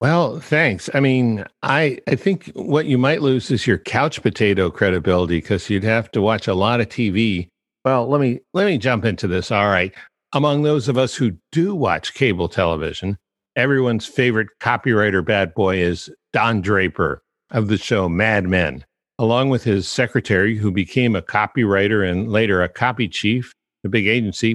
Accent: American